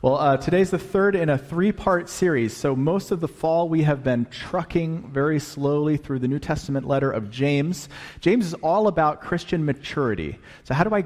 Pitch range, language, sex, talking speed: 115-160 Hz, English, male, 200 wpm